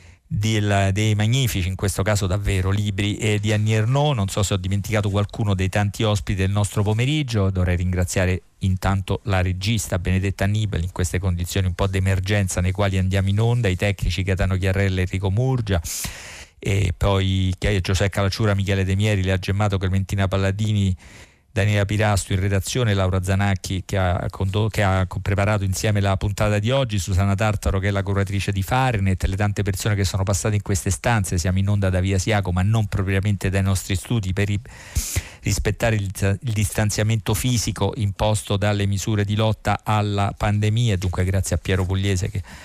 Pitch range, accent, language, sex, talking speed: 95-110 Hz, native, Italian, male, 175 wpm